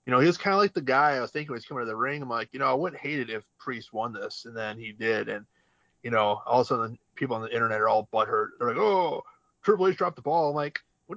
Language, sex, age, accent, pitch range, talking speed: English, male, 30-49, American, 110-130 Hz, 315 wpm